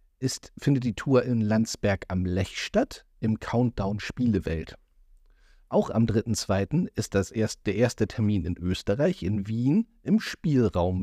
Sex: male